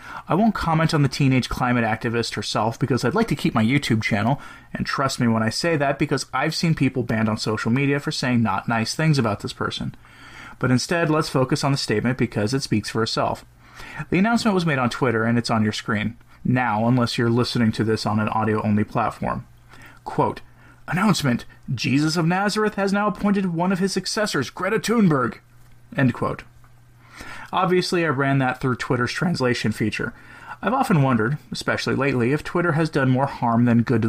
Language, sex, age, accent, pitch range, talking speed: English, male, 30-49, American, 115-155 Hz, 195 wpm